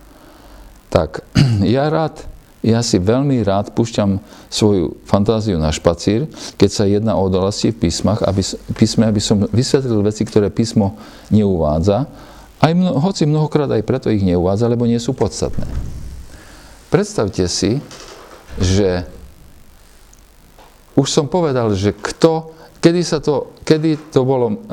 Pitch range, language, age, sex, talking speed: 100-140 Hz, Slovak, 50-69, male, 130 wpm